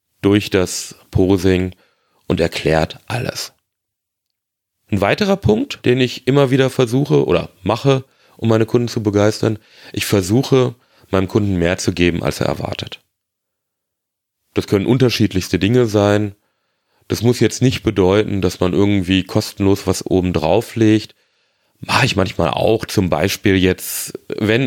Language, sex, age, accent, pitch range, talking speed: German, male, 30-49, German, 90-110 Hz, 140 wpm